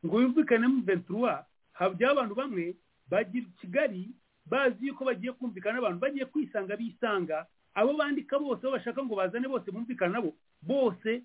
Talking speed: 155 wpm